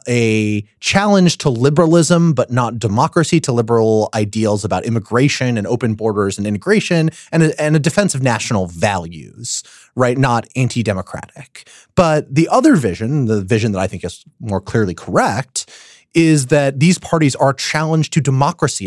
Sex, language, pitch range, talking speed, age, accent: male, English, 110-150 Hz, 155 wpm, 30-49, American